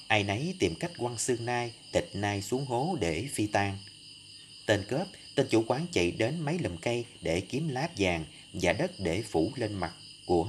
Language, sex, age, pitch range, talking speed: Vietnamese, male, 30-49, 90-140 Hz, 200 wpm